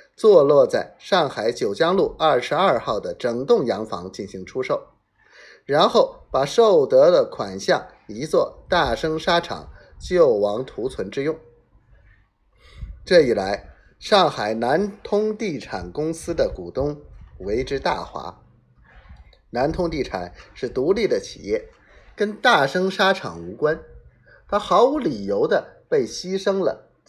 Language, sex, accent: Chinese, male, native